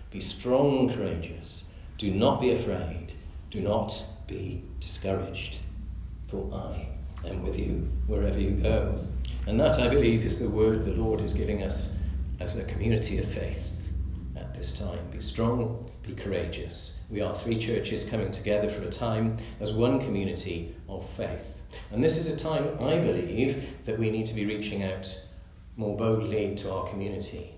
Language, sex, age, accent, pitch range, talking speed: English, male, 40-59, British, 85-110 Hz, 165 wpm